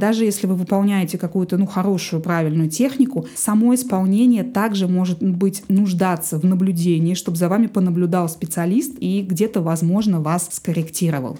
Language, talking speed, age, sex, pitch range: Russian, 140 wpm, 20-39, female, 175-220 Hz